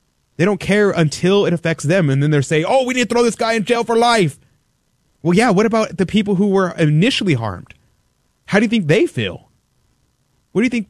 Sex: male